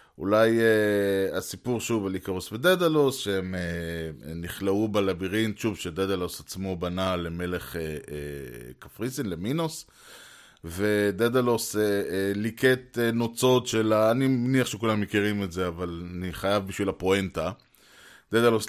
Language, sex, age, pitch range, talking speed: Hebrew, male, 20-39, 95-120 Hz, 130 wpm